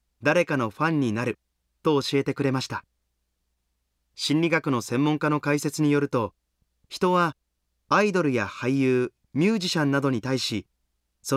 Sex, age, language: male, 30-49, Japanese